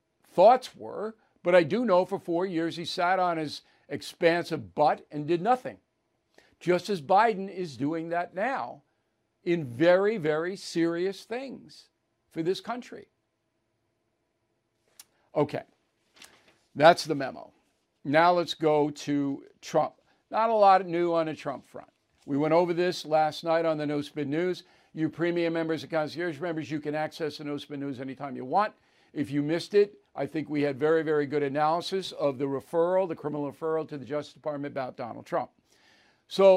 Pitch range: 145-185 Hz